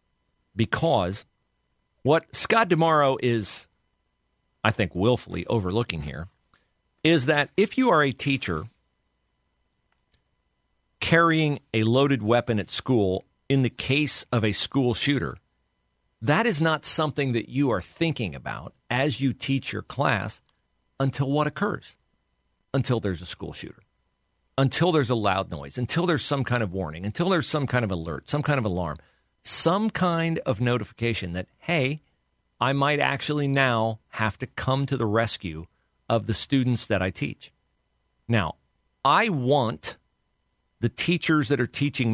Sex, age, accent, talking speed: male, 50-69, American, 145 wpm